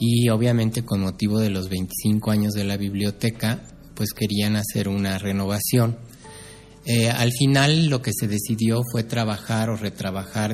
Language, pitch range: Spanish, 100-120 Hz